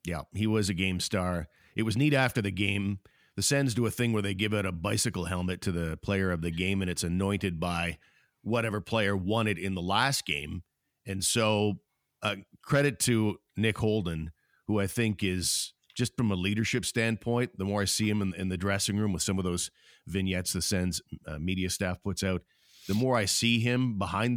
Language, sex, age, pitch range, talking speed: English, male, 50-69, 90-115 Hz, 210 wpm